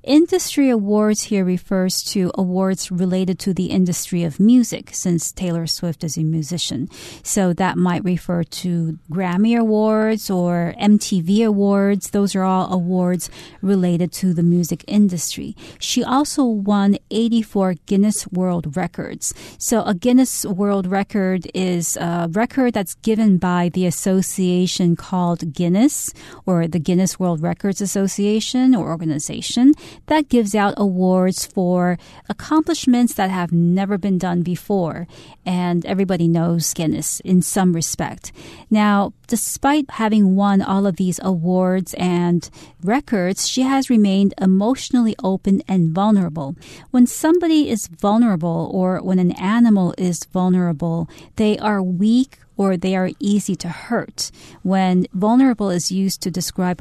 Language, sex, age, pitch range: Chinese, female, 40-59, 175-215 Hz